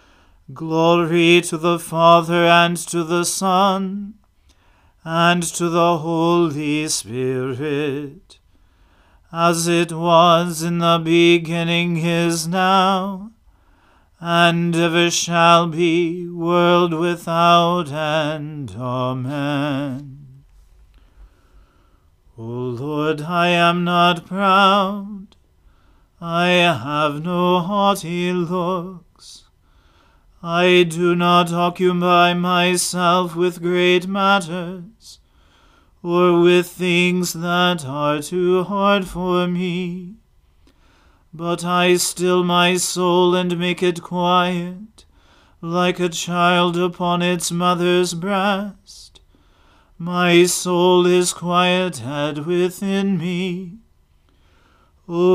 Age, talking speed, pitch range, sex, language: 40-59, 85 wpm, 150-180 Hz, male, English